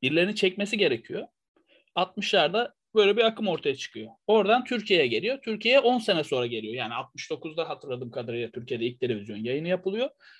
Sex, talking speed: male, 150 wpm